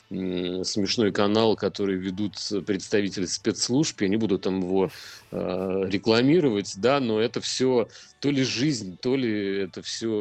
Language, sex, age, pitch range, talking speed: Russian, male, 30-49, 100-120 Hz, 135 wpm